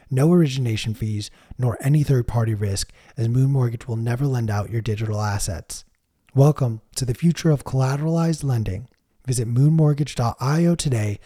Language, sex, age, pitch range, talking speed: English, male, 20-39, 105-140 Hz, 145 wpm